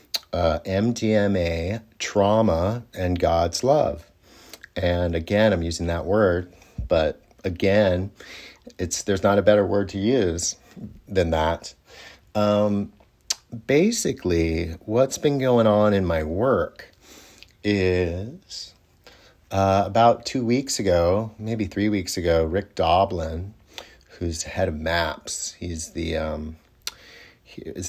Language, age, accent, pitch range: English, 30-49, American, 80-105 Hz